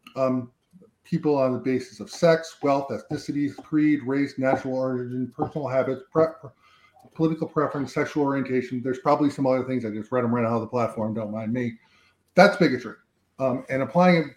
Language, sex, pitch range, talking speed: English, male, 120-145 Hz, 175 wpm